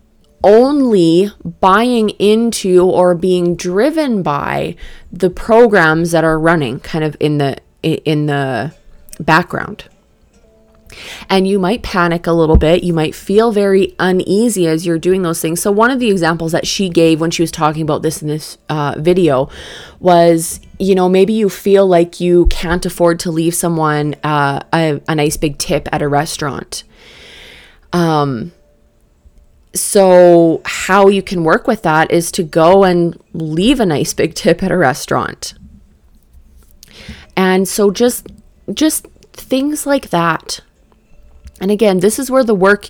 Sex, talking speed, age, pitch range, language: female, 155 wpm, 20-39, 160-195 Hz, English